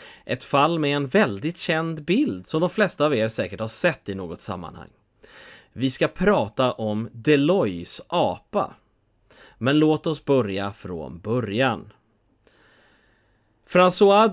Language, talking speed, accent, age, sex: English, 130 wpm, Swedish, 30-49, male